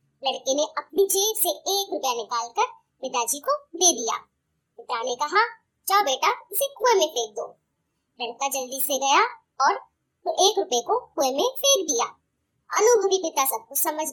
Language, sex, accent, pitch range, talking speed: Hindi, male, native, 265-390 Hz, 155 wpm